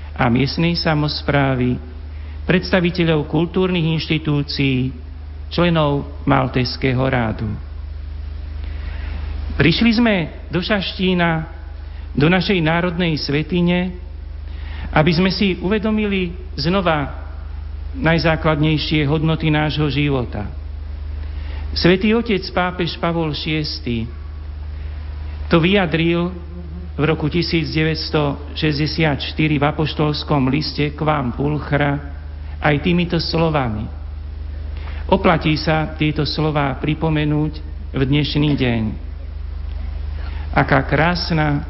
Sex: male